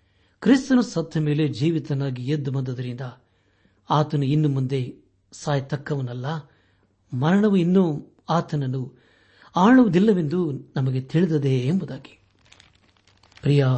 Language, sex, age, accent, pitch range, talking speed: Kannada, male, 60-79, native, 100-150 Hz, 80 wpm